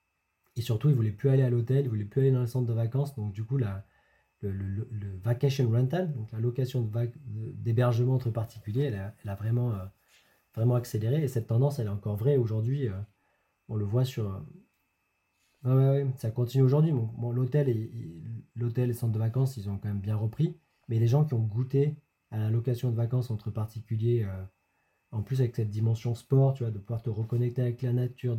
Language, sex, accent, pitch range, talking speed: French, male, French, 105-125 Hz, 230 wpm